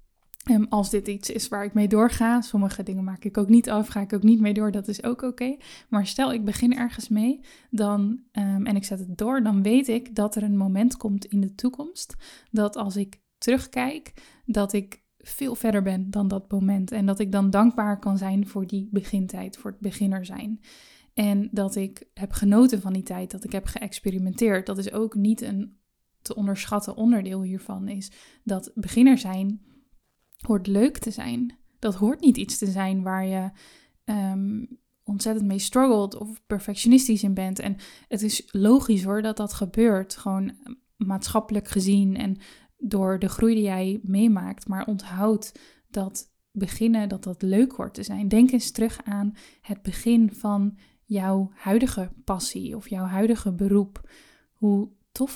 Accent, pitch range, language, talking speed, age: Dutch, 195-230 Hz, Dutch, 175 wpm, 10-29